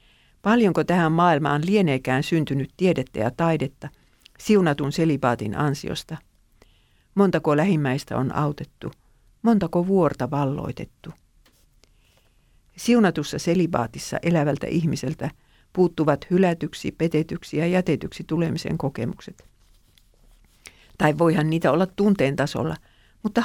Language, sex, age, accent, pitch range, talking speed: Finnish, female, 50-69, native, 140-180 Hz, 90 wpm